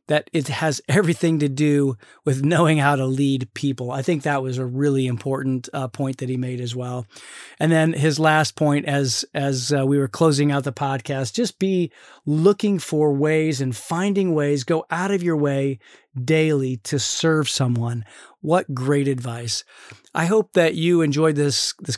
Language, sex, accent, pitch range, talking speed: English, male, American, 135-165 Hz, 185 wpm